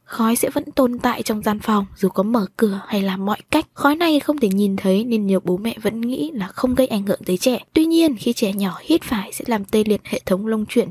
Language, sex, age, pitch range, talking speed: Vietnamese, female, 10-29, 205-265 Hz, 275 wpm